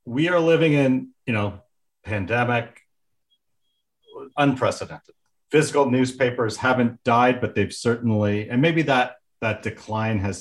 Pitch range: 100-120 Hz